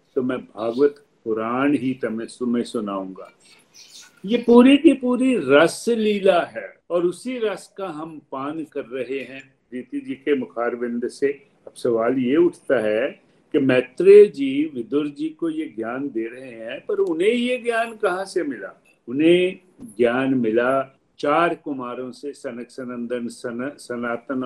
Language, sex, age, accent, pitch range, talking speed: Hindi, male, 50-69, native, 140-225 Hz, 145 wpm